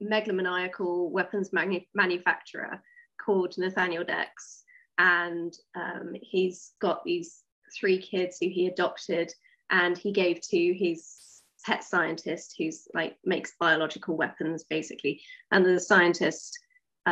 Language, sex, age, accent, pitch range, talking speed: English, female, 20-39, British, 170-245 Hz, 110 wpm